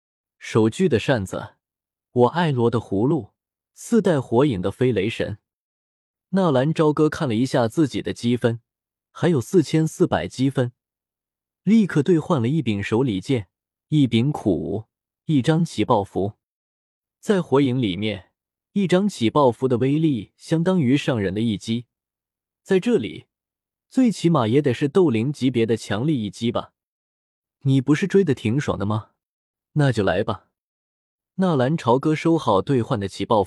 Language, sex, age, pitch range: Chinese, male, 20-39, 105-155 Hz